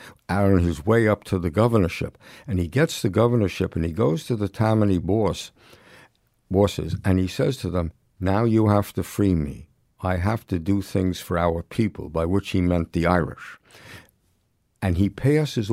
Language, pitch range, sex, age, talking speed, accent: English, 90-115 Hz, male, 60-79, 180 wpm, American